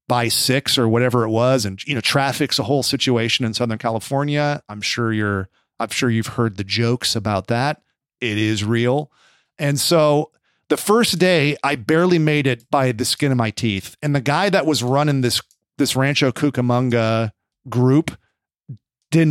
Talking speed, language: 175 wpm, English